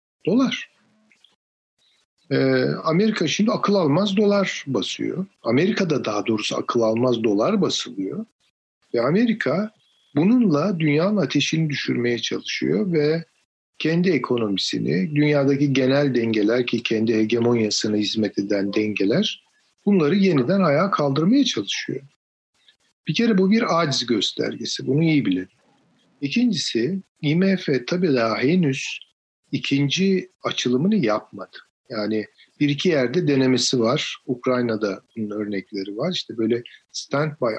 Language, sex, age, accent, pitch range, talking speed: Turkish, male, 50-69, native, 115-180 Hz, 110 wpm